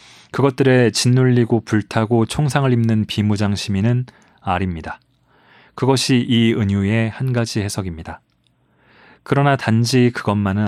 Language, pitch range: Korean, 100-125 Hz